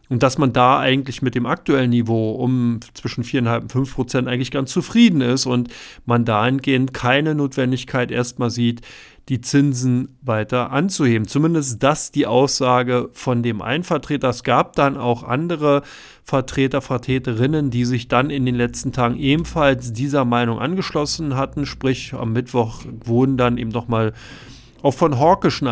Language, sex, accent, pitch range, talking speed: German, male, German, 120-140 Hz, 160 wpm